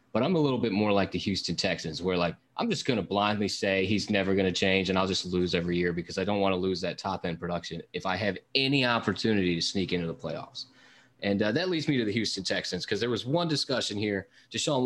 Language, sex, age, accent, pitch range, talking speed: English, male, 20-39, American, 95-130 Hz, 265 wpm